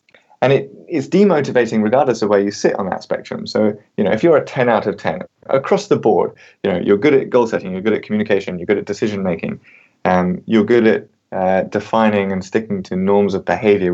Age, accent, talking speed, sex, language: 30-49, British, 230 wpm, male, English